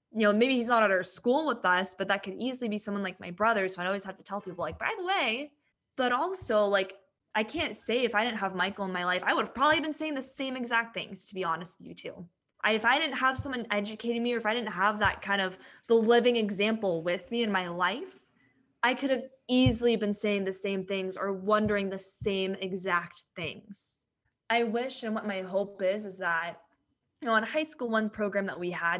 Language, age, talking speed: English, 10-29, 240 wpm